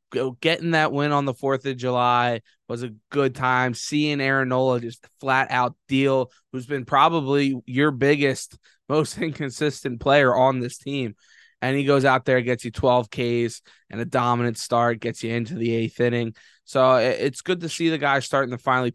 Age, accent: 20-39, American